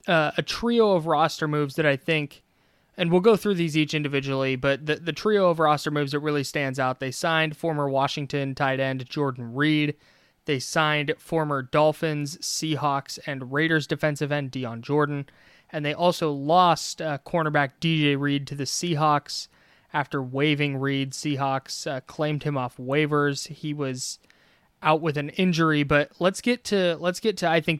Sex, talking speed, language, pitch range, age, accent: male, 175 wpm, English, 140-165 Hz, 20-39, American